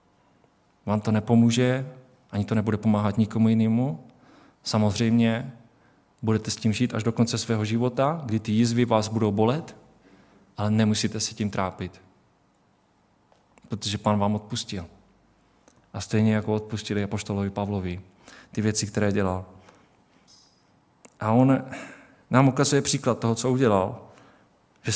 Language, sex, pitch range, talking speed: Czech, male, 105-125 Hz, 125 wpm